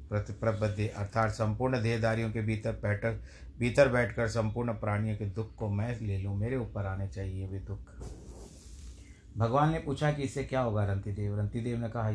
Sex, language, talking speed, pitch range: male, Hindi, 165 wpm, 100-115 Hz